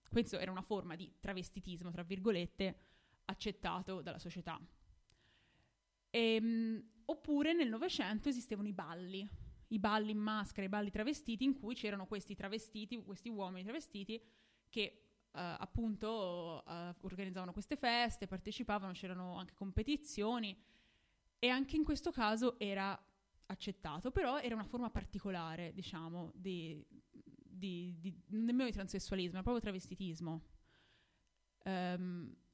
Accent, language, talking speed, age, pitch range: native, Italian, 125 wpm, 20-39, 180-220 Hz